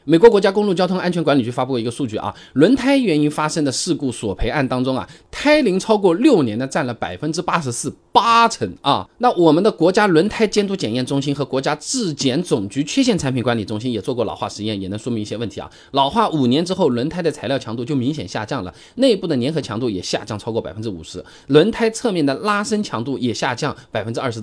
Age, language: 20-39, Chinese